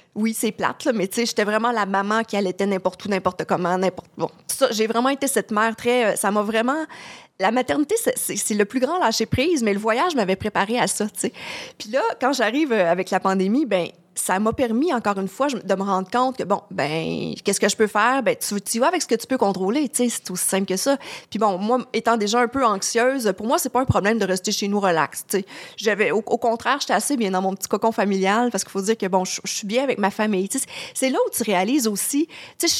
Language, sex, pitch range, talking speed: French, female, 195-255 Hz, 270 wpm